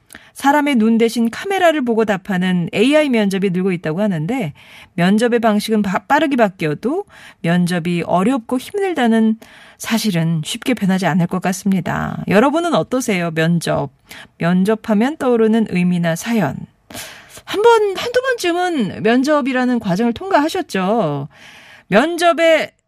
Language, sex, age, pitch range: Korean, female, 40-59, 180-250 Hz